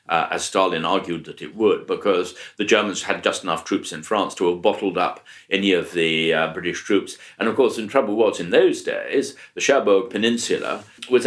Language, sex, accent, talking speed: English, male, British, 210 wpm